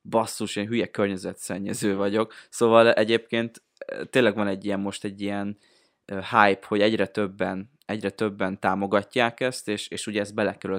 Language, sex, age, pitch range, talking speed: Hungarian, male, 20-39, 100-115 Hz, 150 wpm